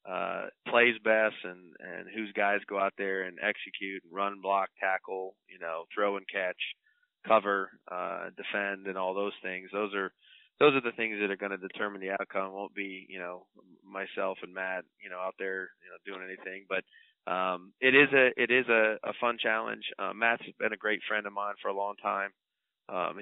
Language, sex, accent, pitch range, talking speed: English, male, American, 95-105 Hz, 205 wpm